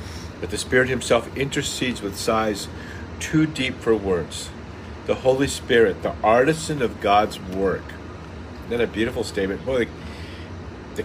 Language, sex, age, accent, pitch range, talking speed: English, male, 50-69, American, 85-105 Hz, 140 wpm